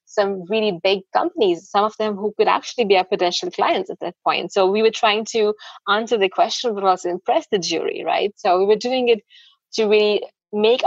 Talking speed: 215 wpm